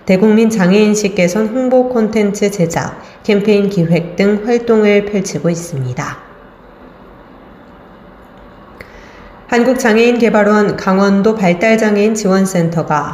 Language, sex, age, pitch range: Korean, female, 30-49, 175-215 Hz